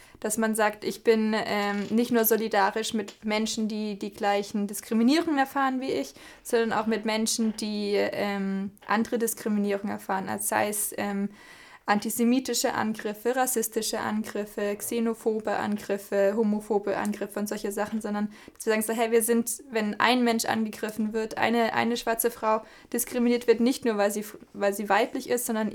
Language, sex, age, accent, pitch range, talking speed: German, female, 20-39, German, 205-230 Hz, 160 wpm